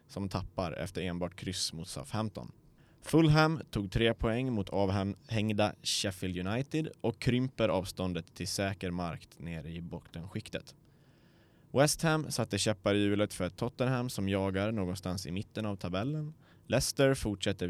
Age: 20-39